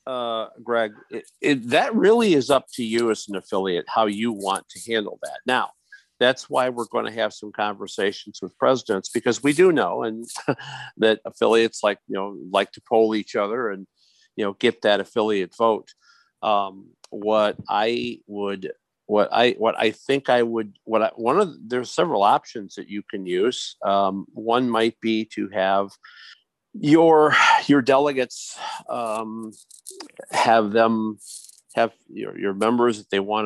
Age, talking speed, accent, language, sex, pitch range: 50-69, 170 wpm, American, English, male, 100-125 Hz